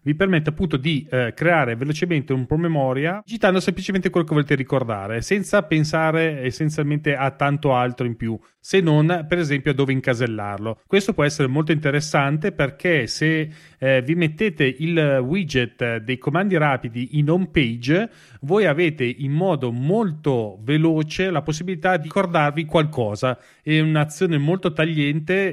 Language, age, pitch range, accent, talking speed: Italian, 30-49, 130-170 Hz, native, 145 wpm